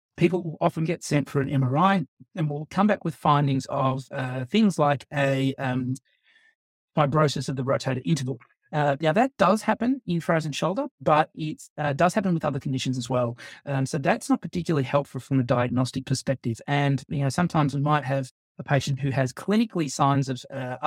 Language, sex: English, male